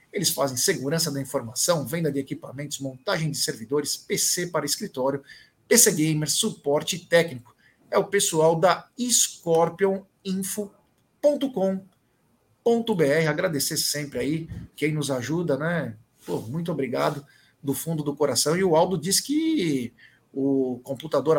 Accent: Brazilian